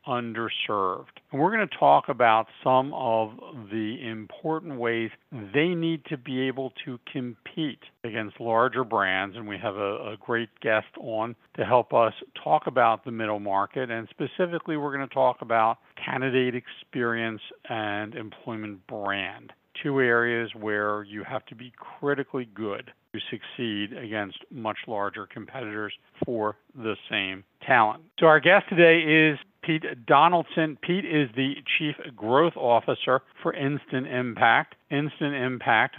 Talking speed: 145 wpm